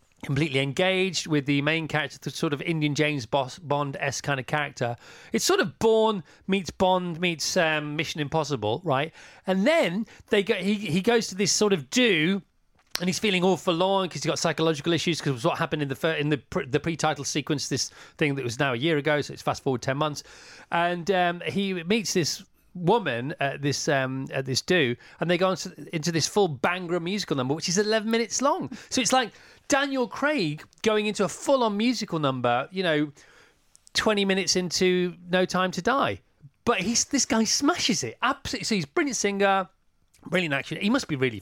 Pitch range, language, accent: 145-200 Hz, English, British